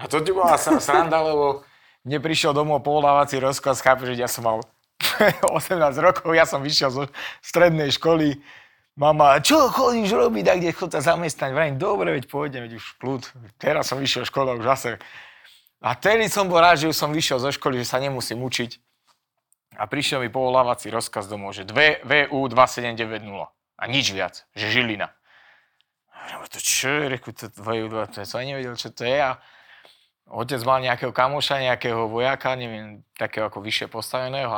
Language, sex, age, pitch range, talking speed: Czech, male, 30-49, 115-150 Hz, 170 wpm